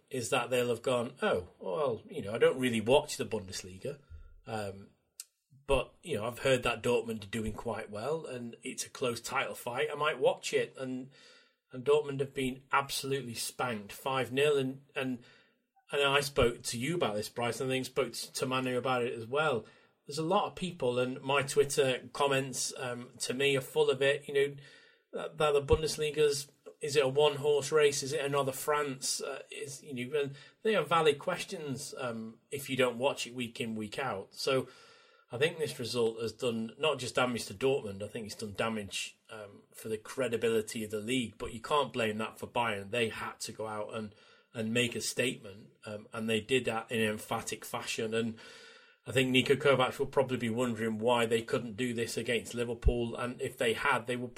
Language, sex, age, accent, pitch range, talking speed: English, male, 30-49, British, 115-150 Hz, 205 wpm